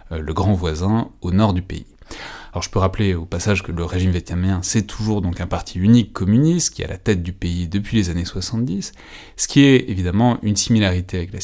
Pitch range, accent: 90-110 Hz, French